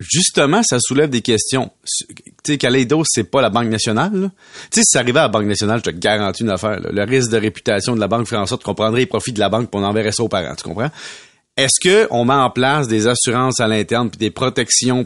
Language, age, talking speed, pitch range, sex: French, 30-49, 265 wpm, 115-145 Hz, male